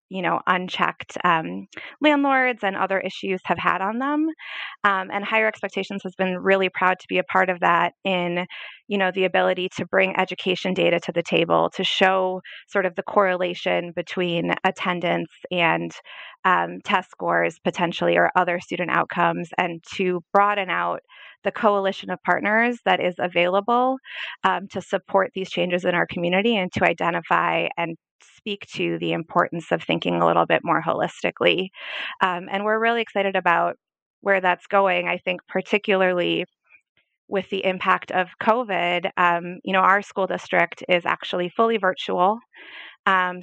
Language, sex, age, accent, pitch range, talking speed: English, female, 20-39, American, 175-200 Hz, 160 wpm